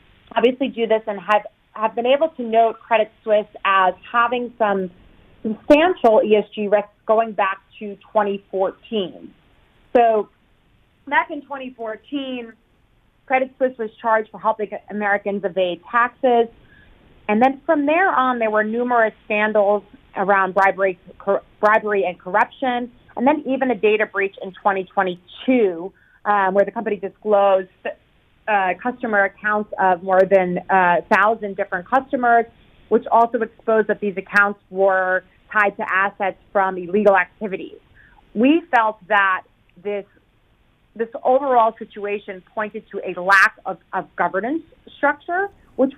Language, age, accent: English, 30-49, American